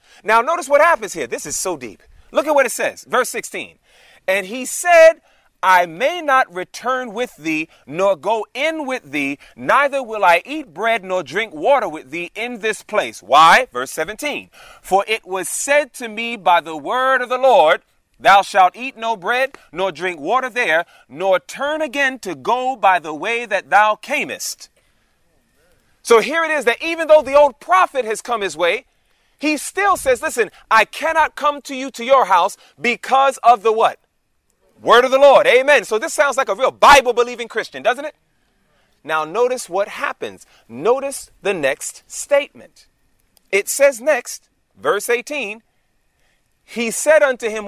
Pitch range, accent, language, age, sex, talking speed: 205-295 Hz, American, English, 30-49, male, 175 wpm